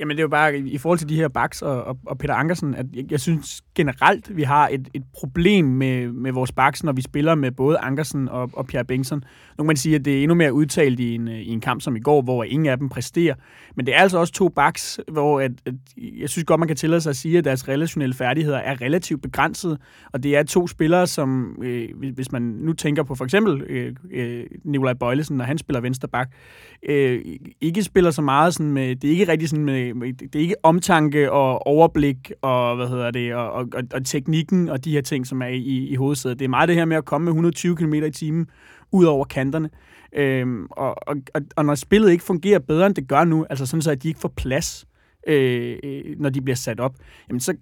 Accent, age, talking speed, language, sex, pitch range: native, 30-49, 245 wpm, Danish, male, 130-160 Hz